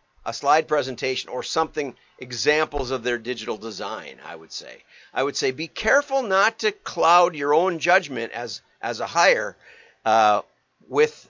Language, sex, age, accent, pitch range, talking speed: English, male, 50-69, American, 115-150 Hz, 160 wpm